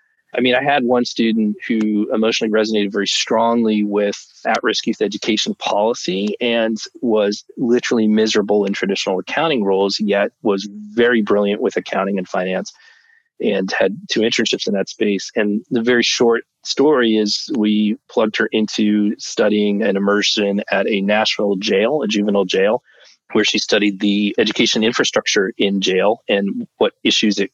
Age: 40-59